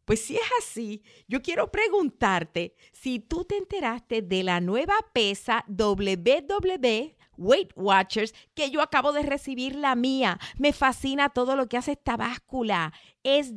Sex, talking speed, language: female, 150 wpm, Spanish